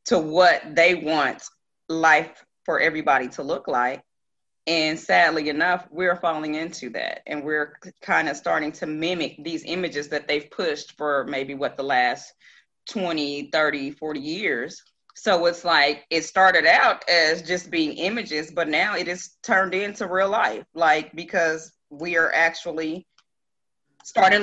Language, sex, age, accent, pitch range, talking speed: English, female, 30-49, American, 155-195 Hz, 150 wpm